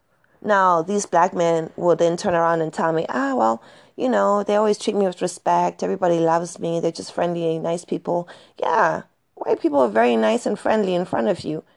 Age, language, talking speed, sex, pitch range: 30-49, English, 215 wpm, female, 170-230 Hz